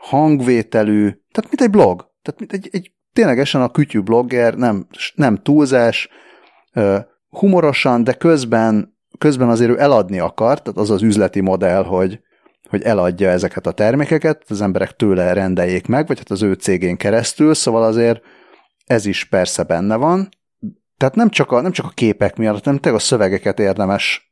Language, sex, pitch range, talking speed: Hungarian, male, 100-155 Hz, 165 wpm